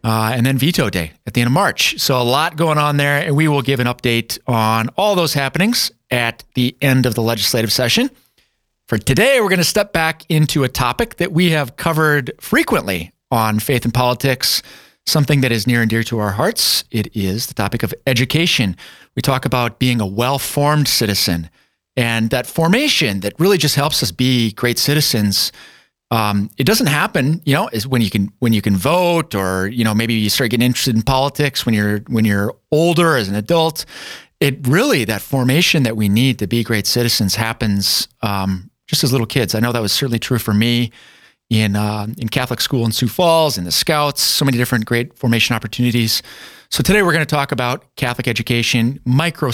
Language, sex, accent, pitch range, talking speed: English, male, American, 115-145 Hz, 205 wpm